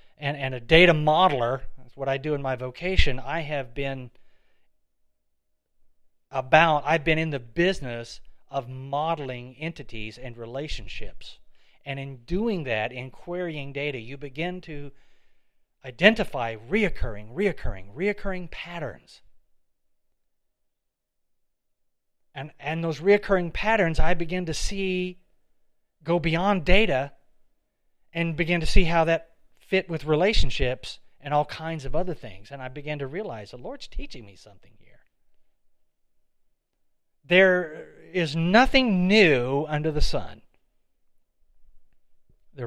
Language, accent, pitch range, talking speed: English, American, 120-170 Hz, 120 wpm